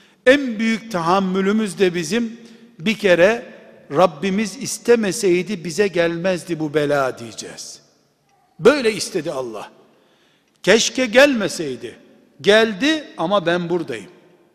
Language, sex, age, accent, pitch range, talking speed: Turkish, male, 60-79, native, 195-240 Hz, 95 wpm